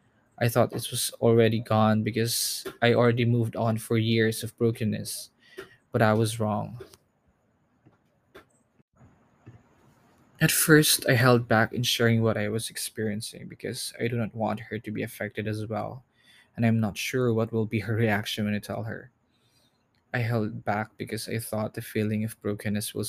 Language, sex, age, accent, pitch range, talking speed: Filipino, male, 20-39, native, 110-125 Hz, 170 wpm